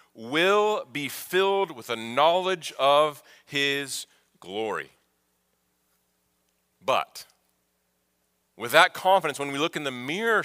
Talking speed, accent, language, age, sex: 110 wpm, American, English, 40-59, male